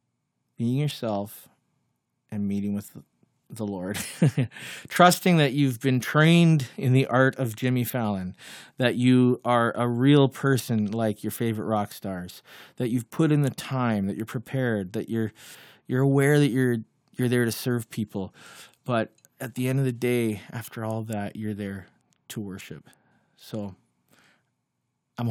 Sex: male